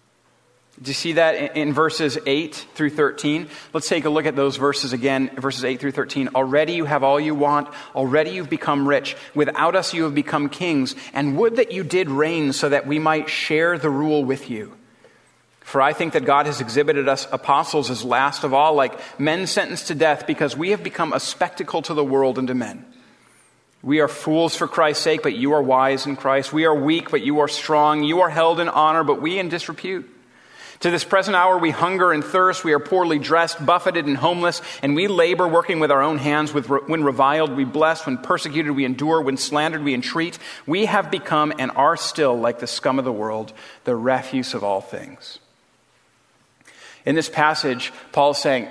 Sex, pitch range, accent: male, 140-165 Hz, American